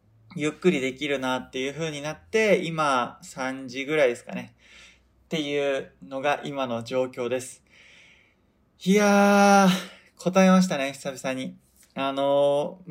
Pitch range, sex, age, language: 135-185 Hz, male, 20-39, Japanese